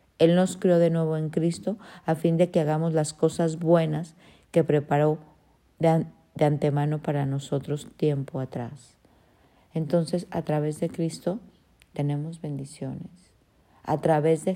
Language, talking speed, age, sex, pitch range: Spanish, 145 wpm, 50-69, female, 140-160 Hz